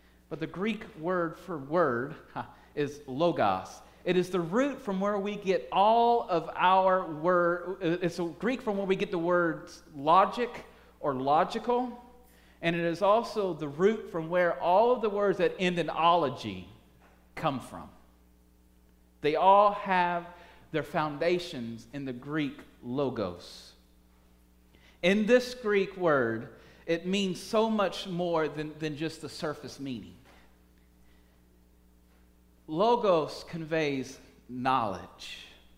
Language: English